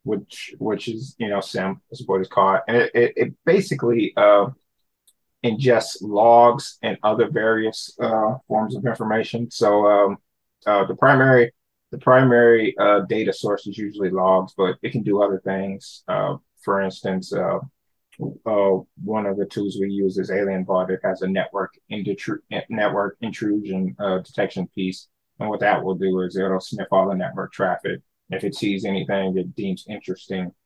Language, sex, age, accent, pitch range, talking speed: English, male, 30-49, American, 95-115 Hz, 170 wpm